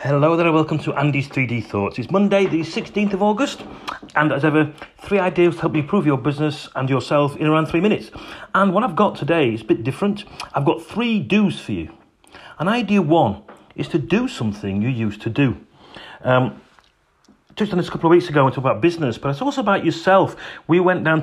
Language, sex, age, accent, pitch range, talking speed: English, male, 40-59, British, 130-170 Hz, 225 wpm